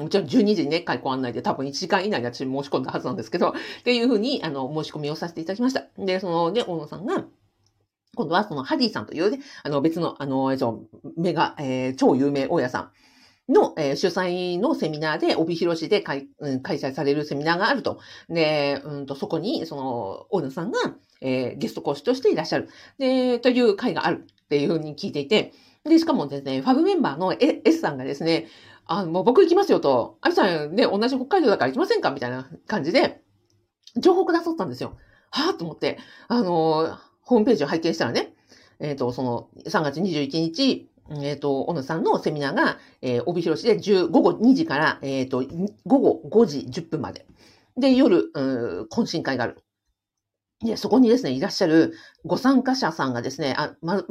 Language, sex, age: Japanese, female, 50-69